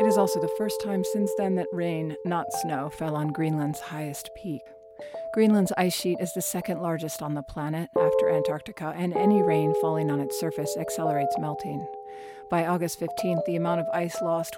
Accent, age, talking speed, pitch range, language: American, 40-59, 190 wpm, 145-180 Hz, English